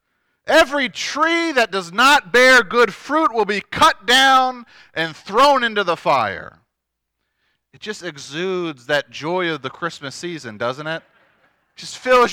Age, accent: 40-59, American